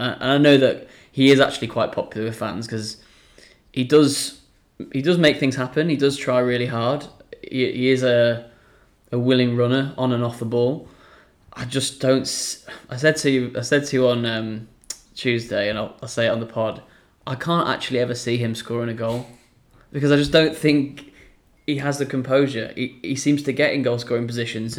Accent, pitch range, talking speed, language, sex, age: British, 115-130 Hz, 205 wpm, English, male, 20-39